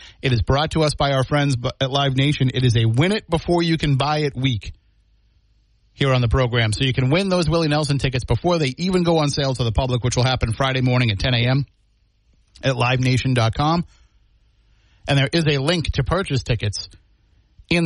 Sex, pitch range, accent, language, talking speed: male, 110-150 Hz, American, English, 190 wpm